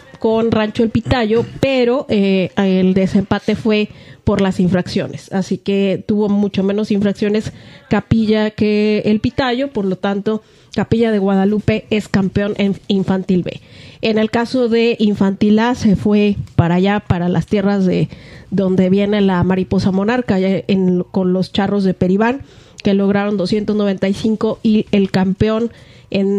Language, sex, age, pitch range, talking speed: Spanish, female, 30-49, 190-215 Hz, 150 wpm